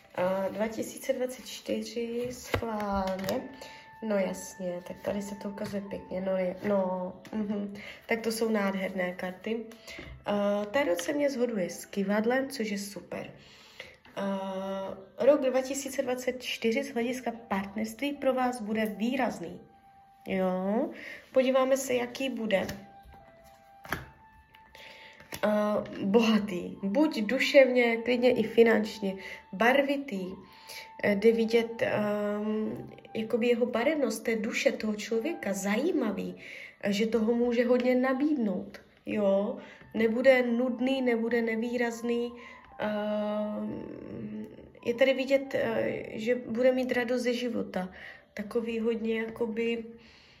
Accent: native